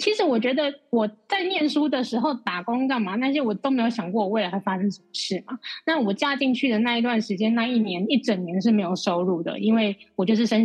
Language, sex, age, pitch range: Chinese, female, 20-39, 200-255 Hz